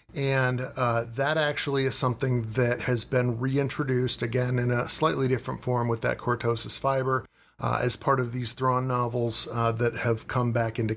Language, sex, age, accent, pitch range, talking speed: English, male, 40-59, American, 120-135 Hz, 180 wpm